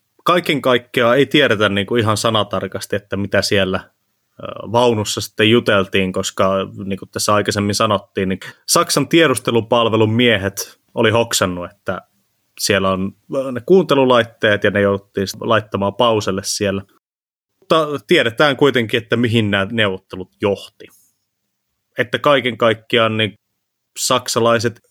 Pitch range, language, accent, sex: 100-120 Hz, Finnish, native, male